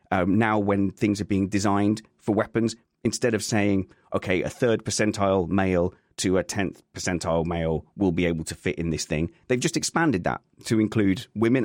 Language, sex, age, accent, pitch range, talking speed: English, male, 30-49, British, 95-120 Hz, 190 wpm